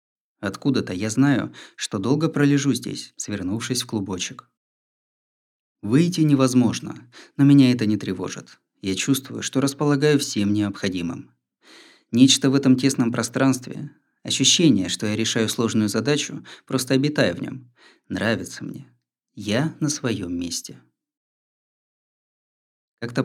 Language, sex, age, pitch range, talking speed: Russian, male, 20-39, 105-135 Hz, 115 wpm